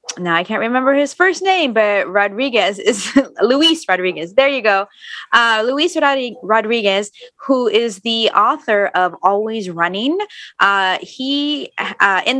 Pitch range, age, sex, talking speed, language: 180-235 Hz, 20-39, female, 140 wpm, English